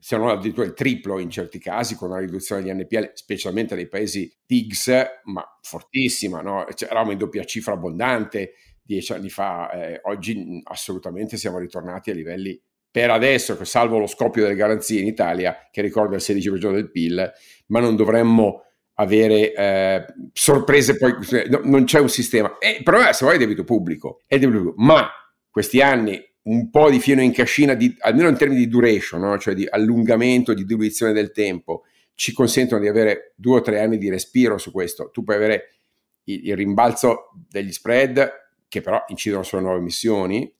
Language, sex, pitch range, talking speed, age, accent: Italian, male, 95-120 Hz, 180 wpm, 50-69, native